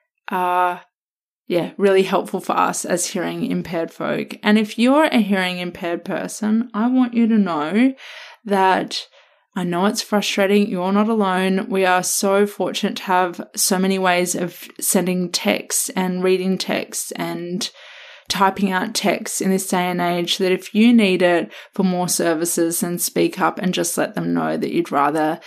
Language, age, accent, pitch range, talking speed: English, 20-39, Australian, 175-210 Hz, 170 wpm